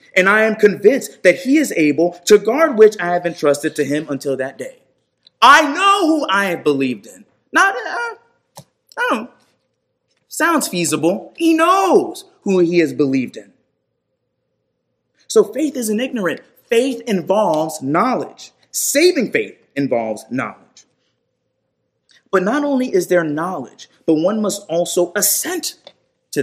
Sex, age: male, 30-49